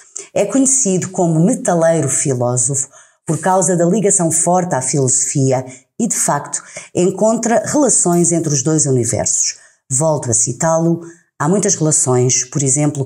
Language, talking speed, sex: Portuguese, 135 wpm, female